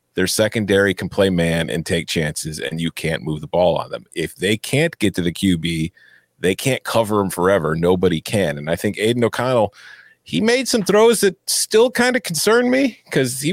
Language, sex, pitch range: English, male, 85-110 Hz